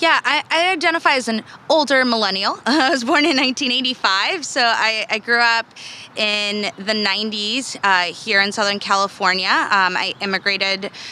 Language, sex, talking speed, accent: English, female, 155 wpm, American